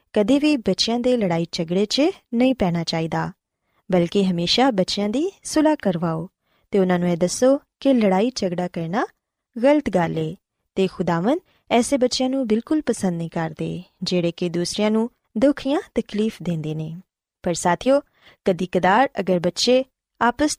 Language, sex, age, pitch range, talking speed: Punjabi, female, 20-39, 175-260 Hz, 140 wpm